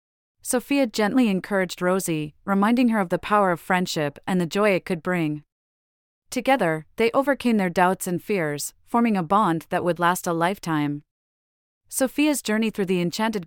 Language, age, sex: English, 30-49, female